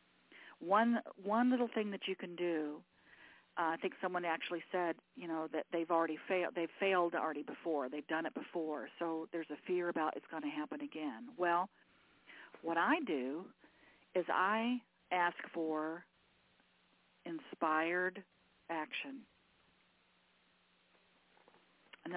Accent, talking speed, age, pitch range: American, 135 wpm, 50-69, 170-245 Hz